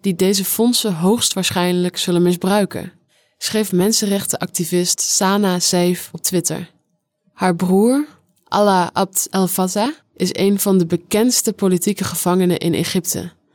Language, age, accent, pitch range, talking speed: English, 20-39, Dutch, 175-205 Hz, 120 wpm